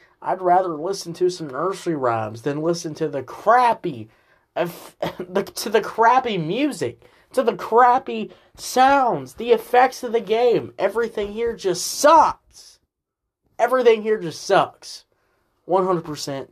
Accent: American